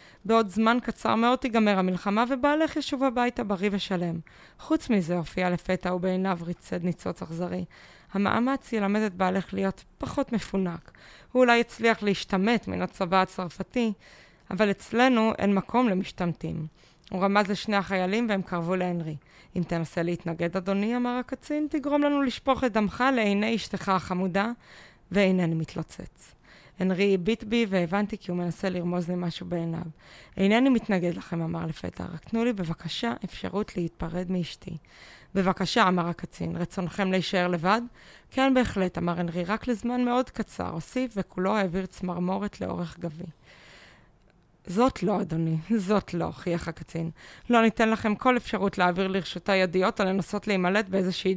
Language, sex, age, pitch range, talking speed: Hebrew, female, 20-39, 175-220 Hz, 145 wpm